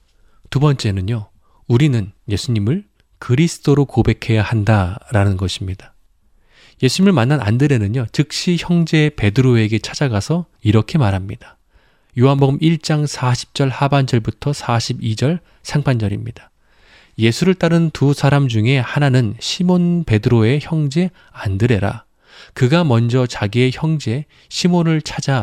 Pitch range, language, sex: 105-145 Hz, Korean, male